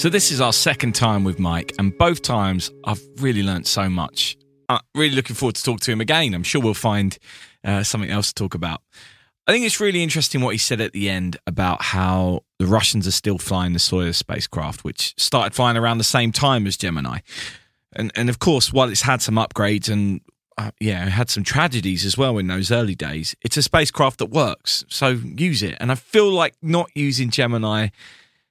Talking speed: 215 wpm